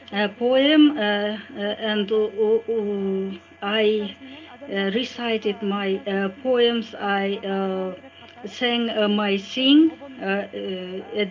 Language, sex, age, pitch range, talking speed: English, female, 50-69, 205-235 Hz, 115 wpm